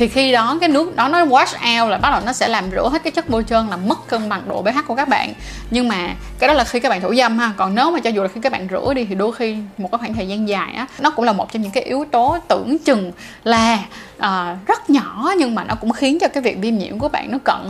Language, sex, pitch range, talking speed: Vietnamese, female, 210-270 Hz, 305 wpm